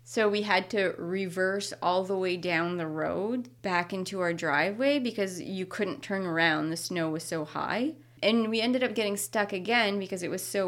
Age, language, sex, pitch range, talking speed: 20-39, English, female, 160-190 Hz, 200 wpm